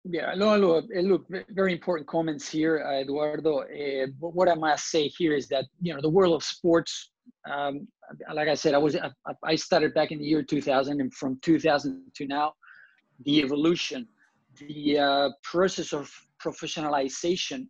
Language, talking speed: English, 160 wpm